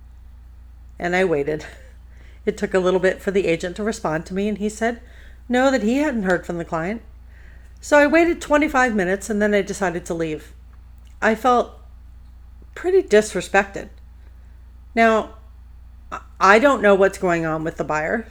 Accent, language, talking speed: American, English, 165 wpm